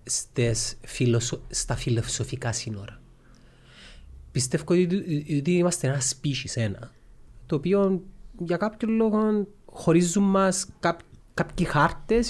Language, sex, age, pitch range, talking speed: Greek, male, 30-49, 130-205 Hz, 90 wpm